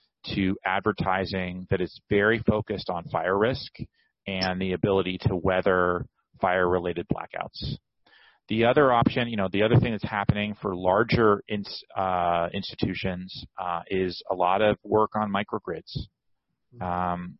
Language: English